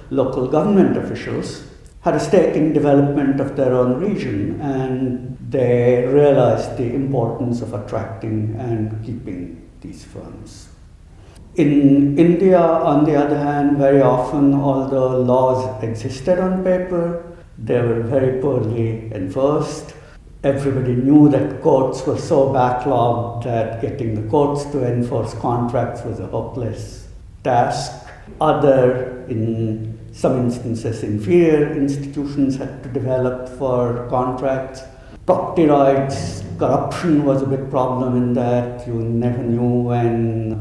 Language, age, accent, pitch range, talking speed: English, 60-79, Indian, 115-135 Hz, 125 wpm